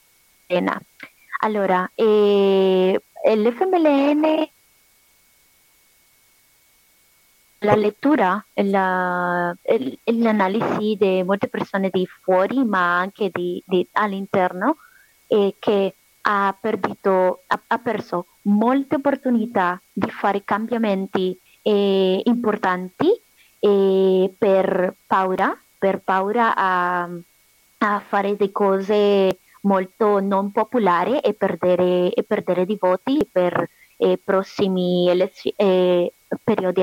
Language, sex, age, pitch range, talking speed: Italian, female, 20-39, 190-230 Hz, 95 wpm